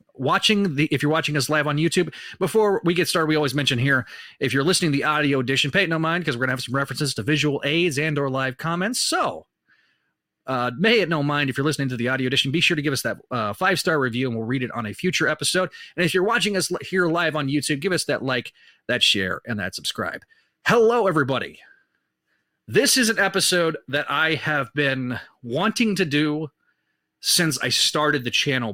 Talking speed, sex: 225 wpm, male